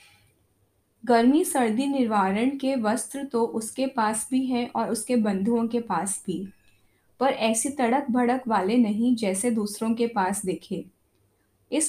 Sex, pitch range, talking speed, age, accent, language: female, 200-255 Hz, 140 wpm, 10-29, native, Hindi